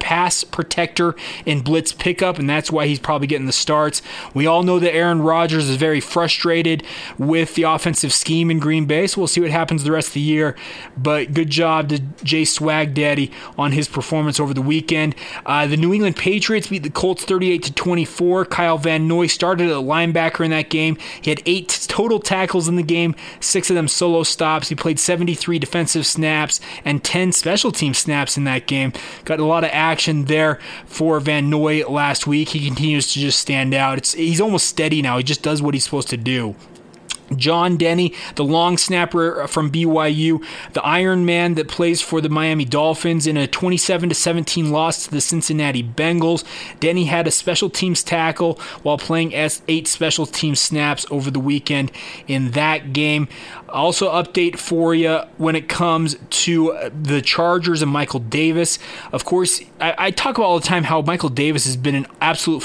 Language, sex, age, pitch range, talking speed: English, male, 20-39, 145-170 Hz, 190 wpm